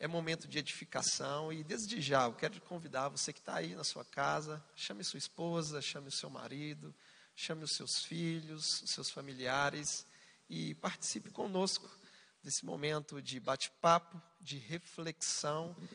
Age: 40-59